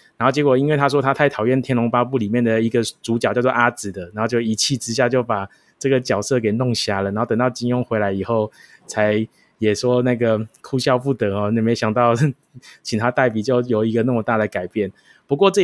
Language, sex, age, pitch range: Chinese, male, 20-39, 110-135 Hz